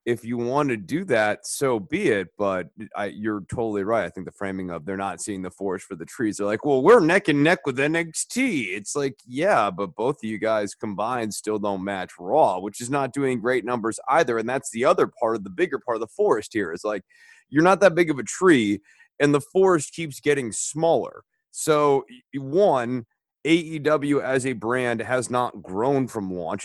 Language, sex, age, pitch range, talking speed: English, male, 30-49, 105-150 Hz, 215 wpm